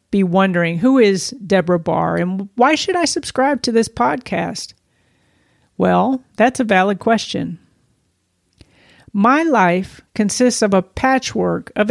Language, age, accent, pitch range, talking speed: English, 50-69, American, 170-225 Hz, 125 wpm